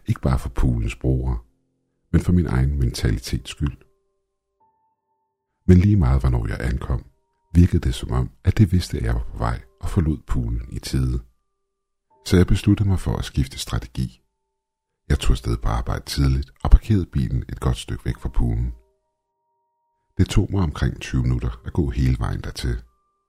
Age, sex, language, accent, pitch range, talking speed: 60-79, male, Danish, native, 65-105 Hz, 175 wpm